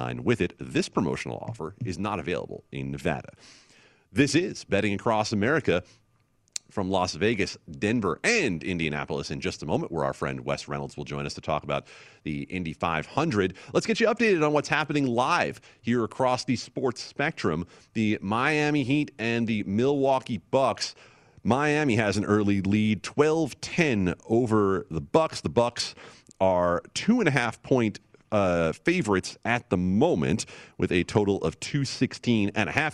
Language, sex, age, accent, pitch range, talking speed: English, male, 40-59, American, 90-130 Hz, 155 wpm